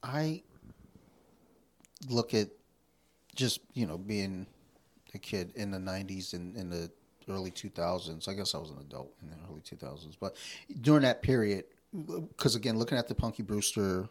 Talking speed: 160 wpm